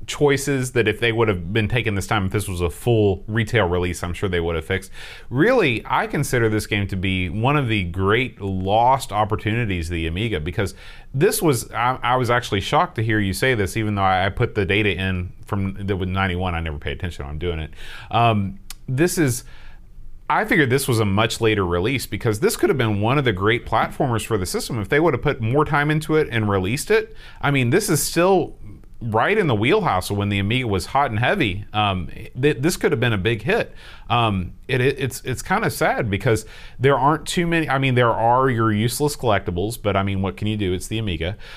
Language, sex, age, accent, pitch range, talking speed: English, male, 30-49, American, 100-130 Hz, 230 wpm